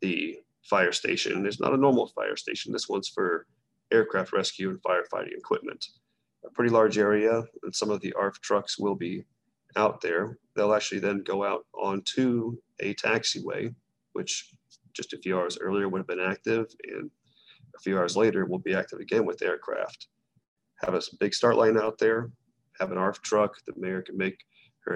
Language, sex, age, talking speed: English, male, 30-49, 185 wpm